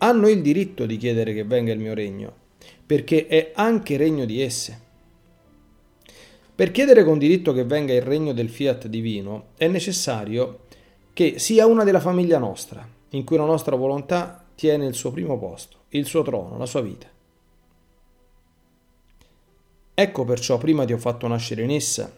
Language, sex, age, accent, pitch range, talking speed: Italian, male, 40-59, native, 115-150 Hz, 160 wpm